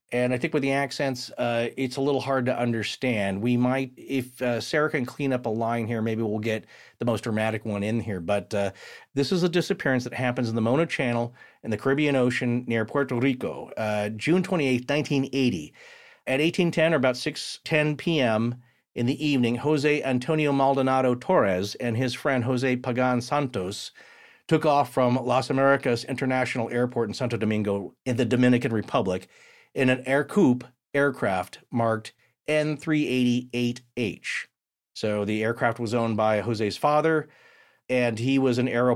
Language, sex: English, male